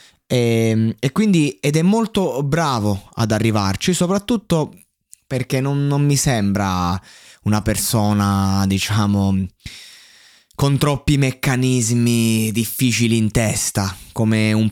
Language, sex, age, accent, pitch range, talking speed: Italian, male, 20-39, native, 105-145 Hz, 105 wpm